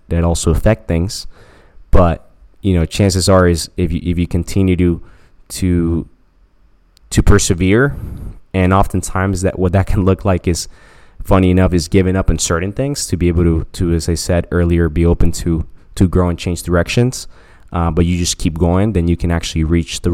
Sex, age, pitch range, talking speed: male, 20-39, 85-95 Hz, 195 wpm